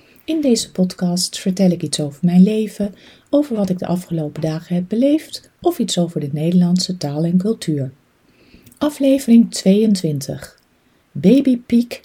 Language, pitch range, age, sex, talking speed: Dutch, 155-200 Hz, 40-59, female, 140 wpm